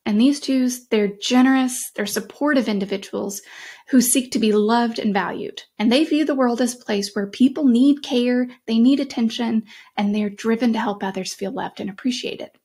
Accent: American